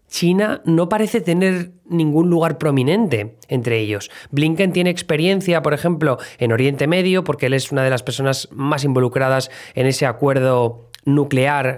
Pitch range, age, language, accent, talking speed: 120-150 Hz, 20-39, Spanish, Spanish, 155 wpm